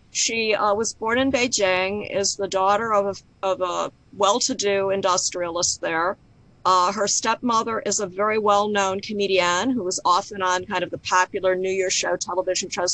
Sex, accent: female, American